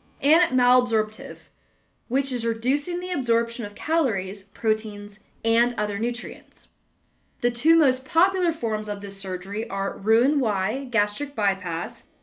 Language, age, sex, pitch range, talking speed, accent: English, 20-39, female, 210-265 Hz, 125 wpm, American